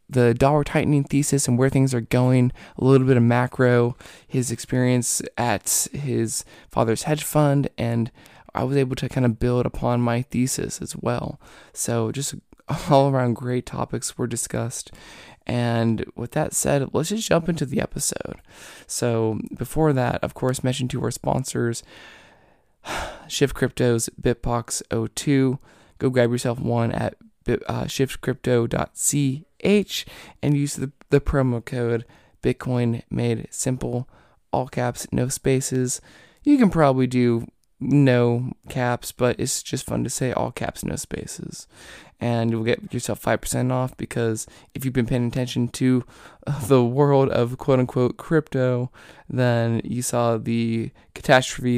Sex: male